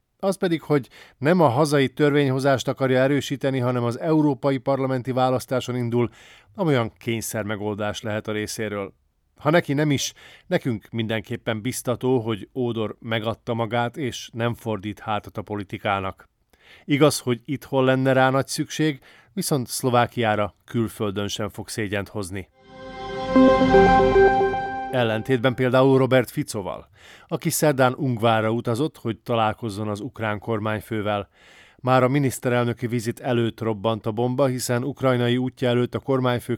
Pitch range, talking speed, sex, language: 110-130 Hz, 130 wpm, male, Hungarian